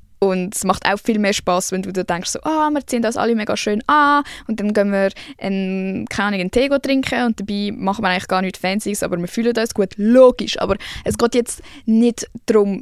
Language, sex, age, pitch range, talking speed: German, female, 10-29, 185-230 Hz, 230 wpm